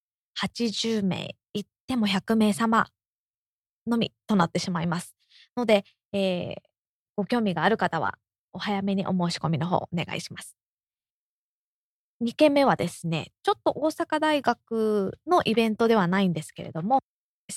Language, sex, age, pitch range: Japanese, female, 20-39, 175-230 Hz